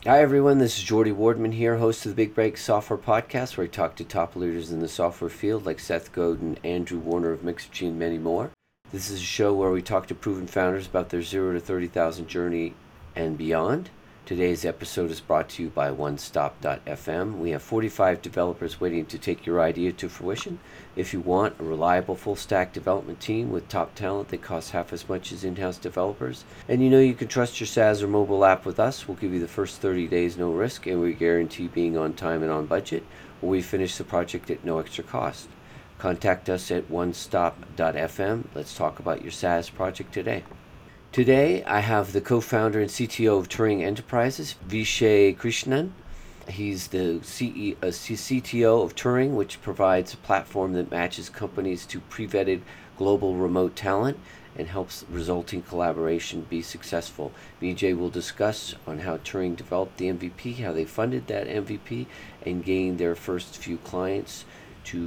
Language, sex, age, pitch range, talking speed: English, male, 40-59, 85-105 Hz, 180 wpm